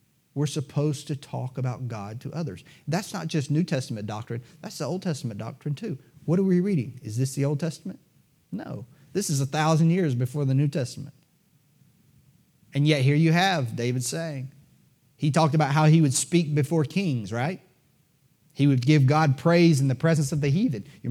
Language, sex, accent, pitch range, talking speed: English, male, American, 130-160 Hz, 195 wpm